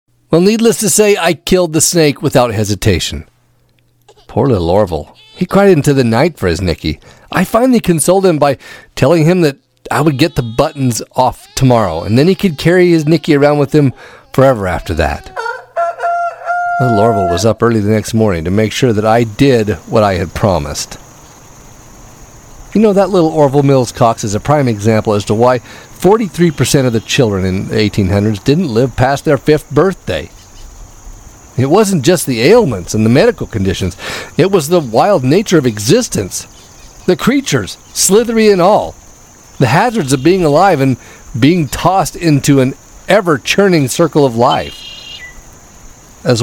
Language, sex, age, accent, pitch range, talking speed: English, male, 40-59, American, 110-175 Hz, 170 wpm